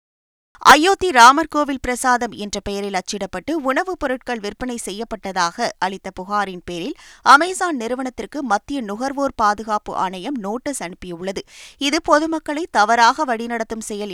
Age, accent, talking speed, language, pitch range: 20-39, native, 110 wpm, Tamil, 205-285 Hz